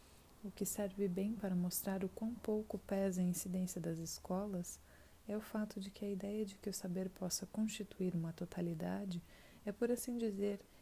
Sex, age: female, 20-39